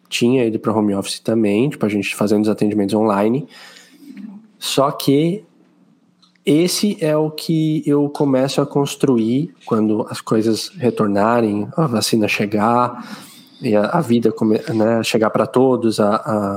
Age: 20-39